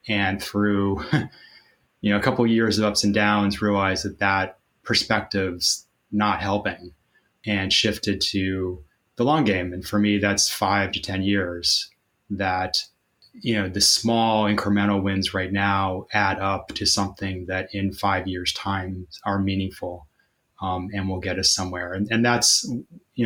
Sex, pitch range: male, 95-105 Hz